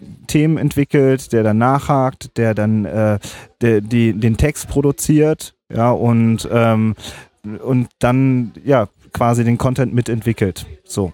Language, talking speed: German, 130 wpm